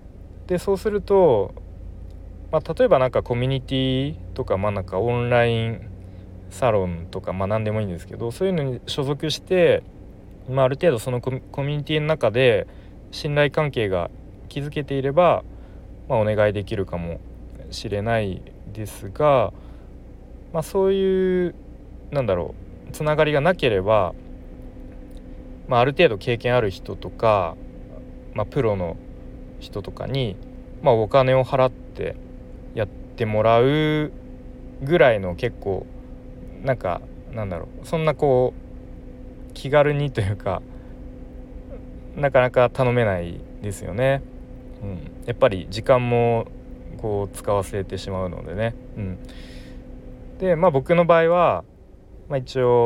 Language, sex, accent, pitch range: Japanese, male, native, 95-135 Hz